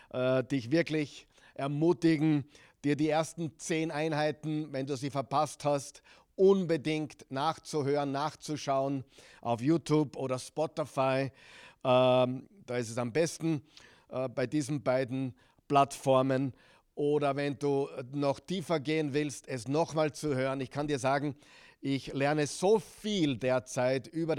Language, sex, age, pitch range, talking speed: German, male, 50-69, 135-160 Hz, 125 wpm